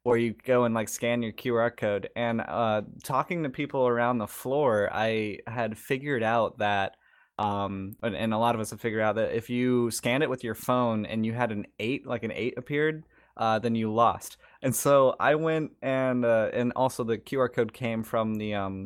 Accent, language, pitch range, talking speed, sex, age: American, English, 110-130 Hz, 215 wpm, male, 20-39